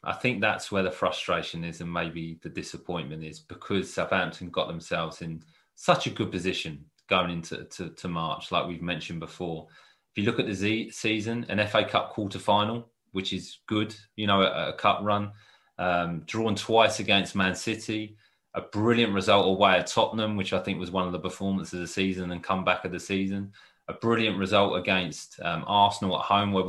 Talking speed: 190 wpm